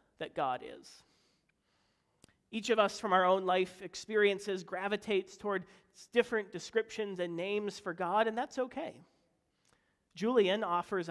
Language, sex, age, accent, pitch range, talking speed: English, male, 40-59, American, 170-200 Hz, 130 wpm